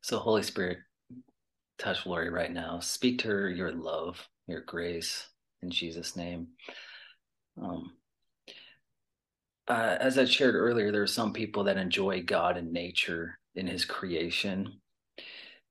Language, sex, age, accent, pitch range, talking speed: English, male, 30-49, American, 90-115 Hz, 135 wpm